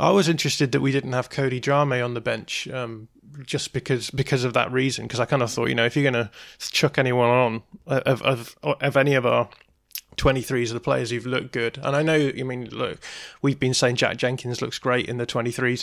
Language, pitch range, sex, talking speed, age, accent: English, 115-135 Hz, male, 240 wpm, 20-39, British